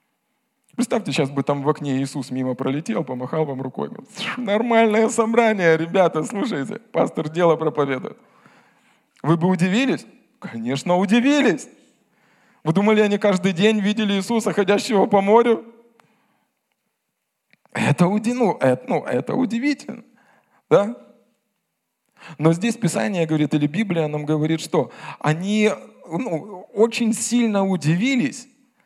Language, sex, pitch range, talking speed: Russian, male, 150-215 Hz, 105 wpm